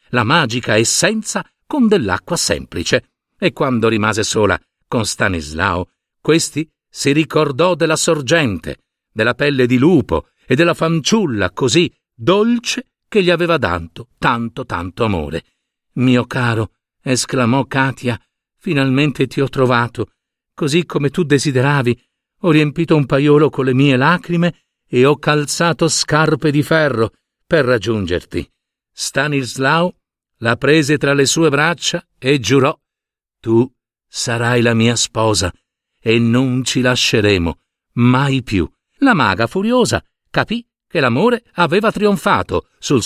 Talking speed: 125 wpm